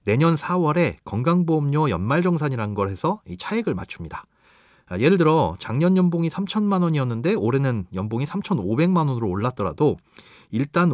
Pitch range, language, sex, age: 105-170 Hz, Korean, male, 30-49